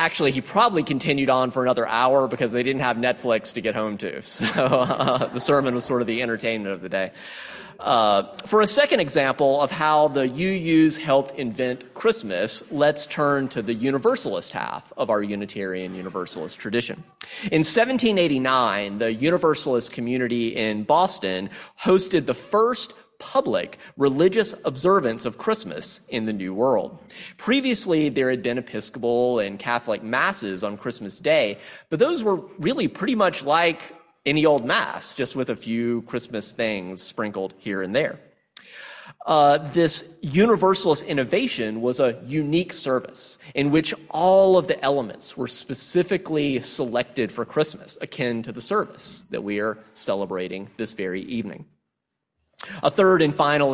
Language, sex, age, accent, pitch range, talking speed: English, male, 30-49, American, 115-160 Hz, 150 wpm